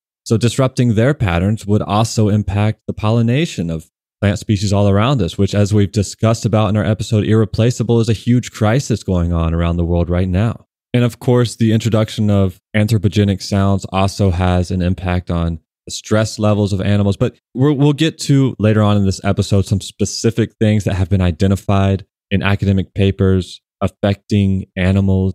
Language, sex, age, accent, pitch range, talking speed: English, male, 20-39, American, 95-115 Hz, 175 wpm